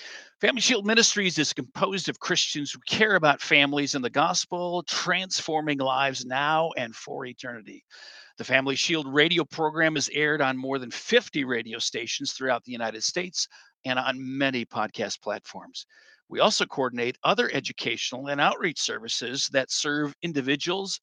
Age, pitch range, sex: 50-69, 135-190 Hz, male